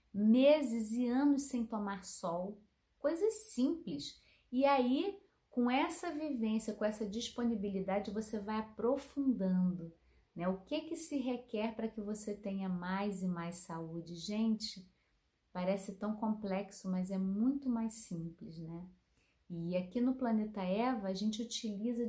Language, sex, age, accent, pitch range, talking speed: Portuguese, female, 30-49, Brazilian, 200-250 Hz, 140 wpm